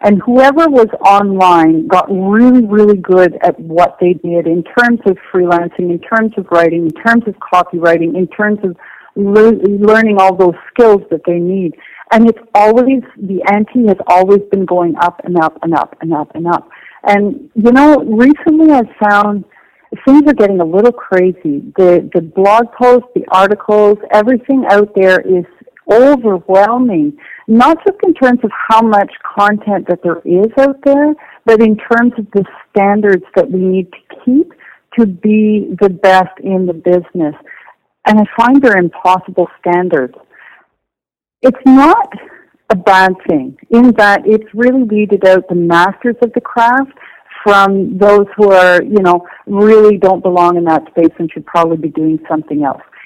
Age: 50-69